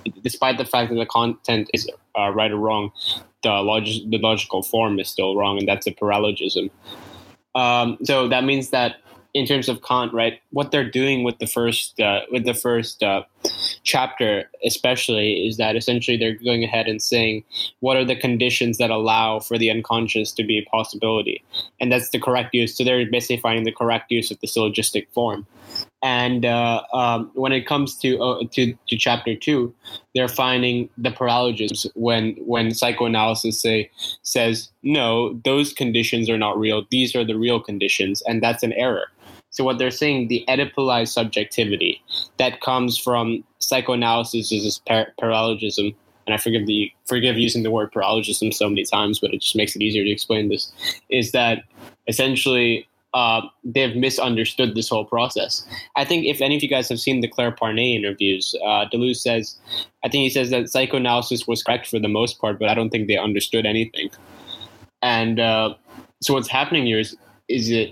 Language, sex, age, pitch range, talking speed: English, male, 10-29, 110-125 Hz, 185 wpm